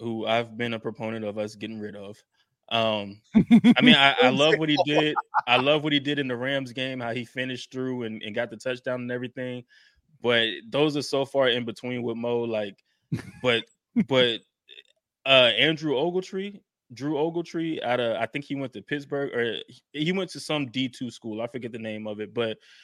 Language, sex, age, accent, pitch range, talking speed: English, male, 20-39, American, 110-130 Hz, 205 wpm